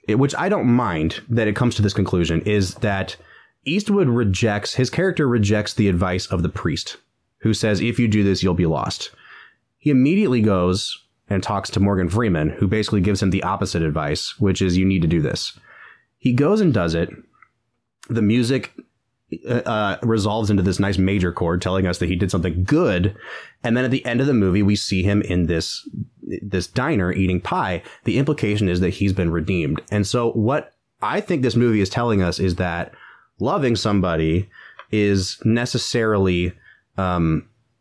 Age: 30-49